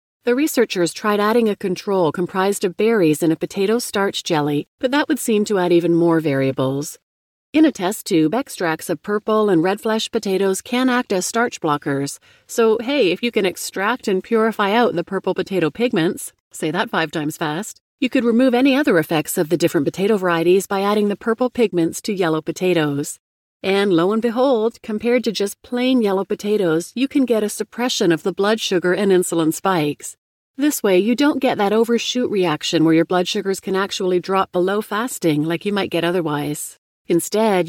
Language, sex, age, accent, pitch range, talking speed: English, female, 40-59, American, 170-225 Hz, 195 wpm